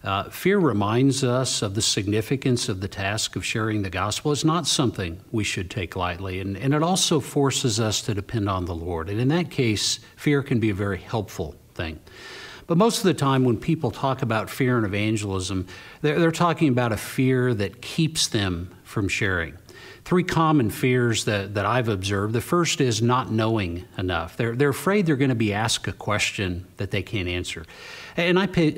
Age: 50-69